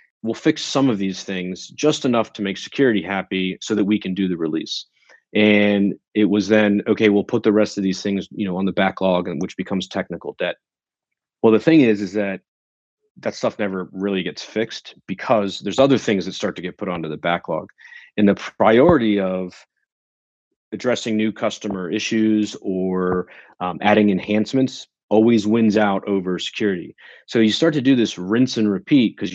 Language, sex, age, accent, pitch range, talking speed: English, male, 30-49, American, 95-115 Hz, 190 wpm